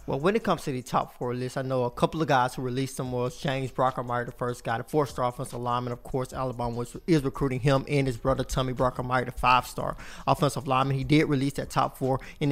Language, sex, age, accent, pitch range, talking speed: English, male, 20-39, American, 130-150 Hz, 240 wpm